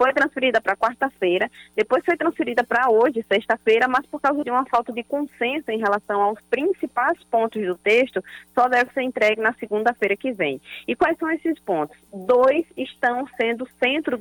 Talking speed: 175 wpm